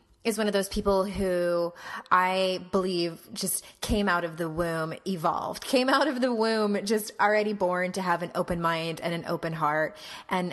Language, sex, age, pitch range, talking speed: English, female, 20-39, 170-210 Hz, 190 wpm